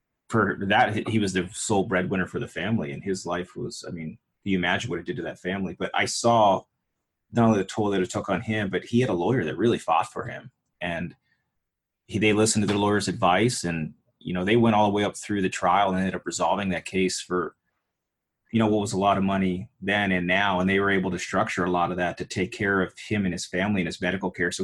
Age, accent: 30-49, American